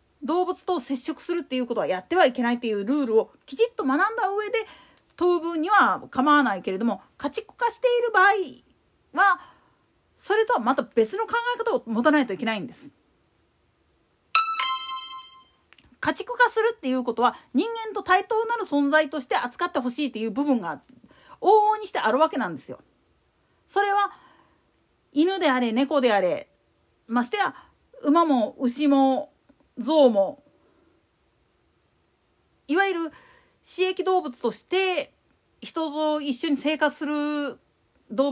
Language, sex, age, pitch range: Japanese, female, 40-59, 260-380 Hz